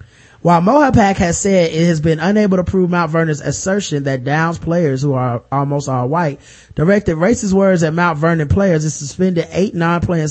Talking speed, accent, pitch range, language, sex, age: 185 wpm, American, 145-185 Hz, English, male, 30-49